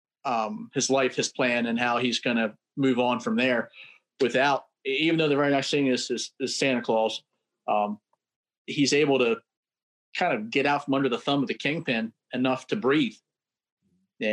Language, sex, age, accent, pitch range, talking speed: English, male, 40-59, American, 125-185 Hz, 185 wpm